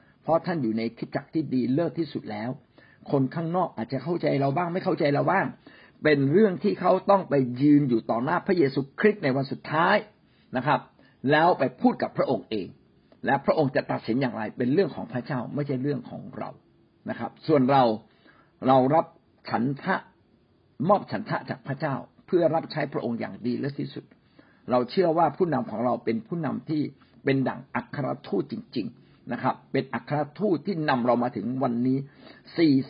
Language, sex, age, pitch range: Thai, male, 60-79, 130-170 Hz